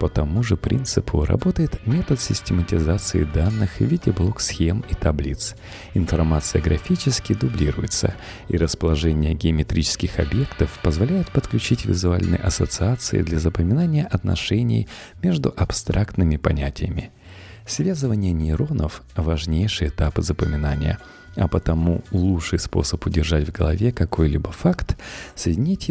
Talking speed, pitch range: 105 wpm, 80-110 Hz